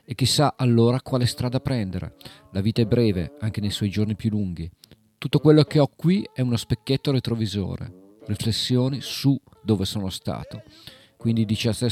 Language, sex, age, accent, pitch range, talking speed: Italian, male, 40-59, native, 100-130 Hz, 170 wpm